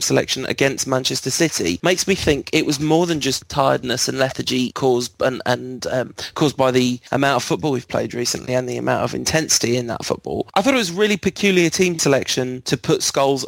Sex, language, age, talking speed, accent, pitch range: male, English, 20-39, 210 wpm, British, 125-145 Hz